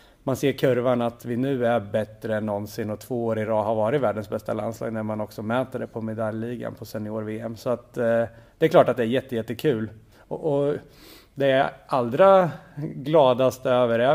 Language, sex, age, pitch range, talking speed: Swedish, male, 30-49, 115-135 Hz, 205 wpm